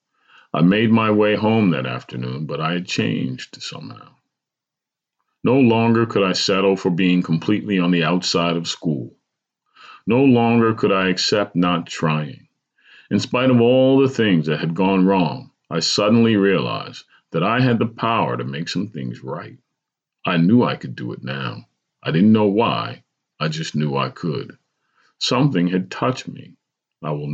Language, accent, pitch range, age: English, American, 85-115 Hz, 40-59